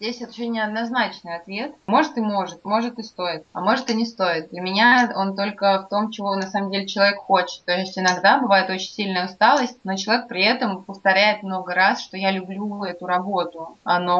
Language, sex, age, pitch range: Russian, female, 20-39, 185-215 Hz